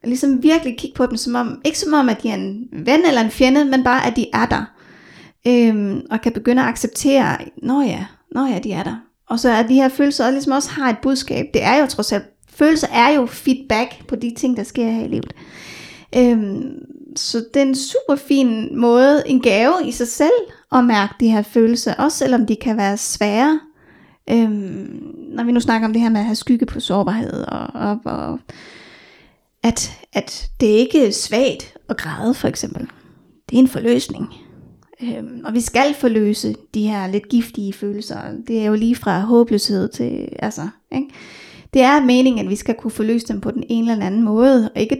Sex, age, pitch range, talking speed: female, 30-49, 225-270 Hz, 210 wpm